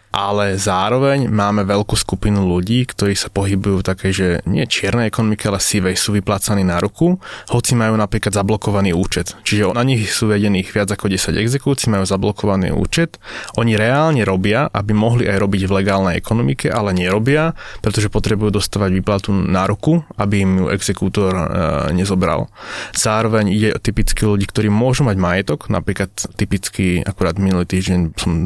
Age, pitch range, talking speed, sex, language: 20-39, 100-115 Hz, 160 wpm, male, Slovak